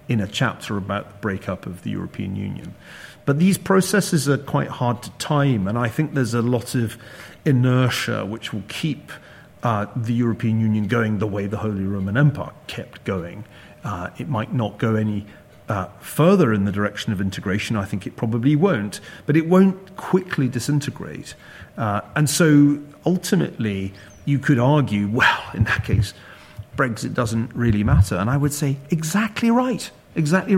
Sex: male